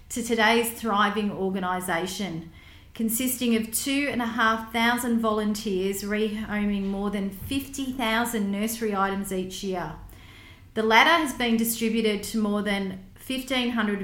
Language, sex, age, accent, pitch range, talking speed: English, female, 40-59, Australian, 190-230 Hz, 125 wpm